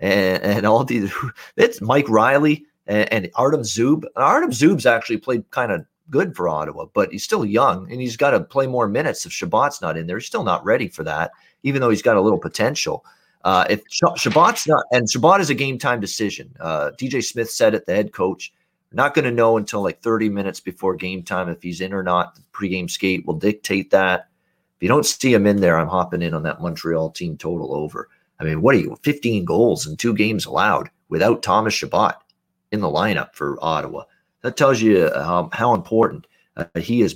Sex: male